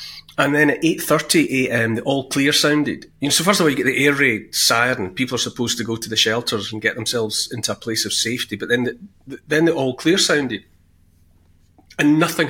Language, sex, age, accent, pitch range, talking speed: English, male, 30-49, British, 90-150 Hz, 230 wpm